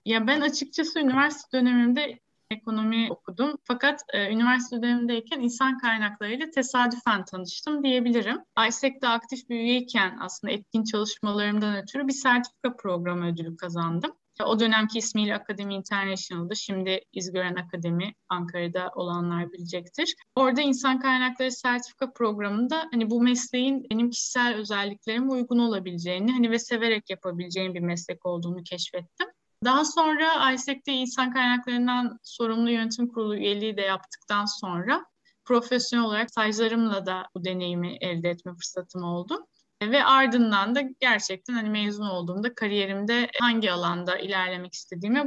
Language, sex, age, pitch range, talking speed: Turkish, female, 10-29, 190-250 Hz, 125 wpm